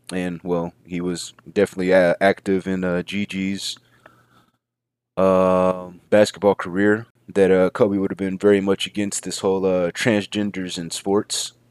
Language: English